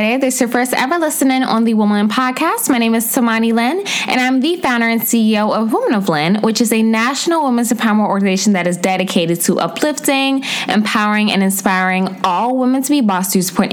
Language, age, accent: English, 10-29, American